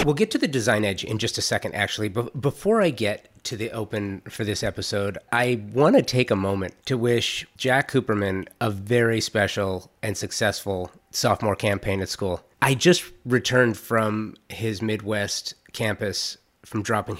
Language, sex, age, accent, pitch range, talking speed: English, male, 30-49, American, 105-120 Hz, 170 wpm